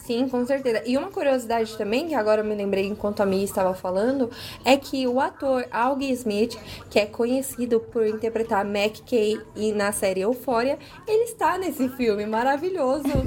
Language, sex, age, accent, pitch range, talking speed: Portuguese, female, 20-39, Brazilian, 215-265 Hz, 175 wpm